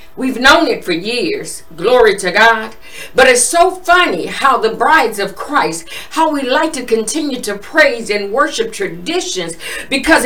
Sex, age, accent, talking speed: female, 50-69, American, 165 wpm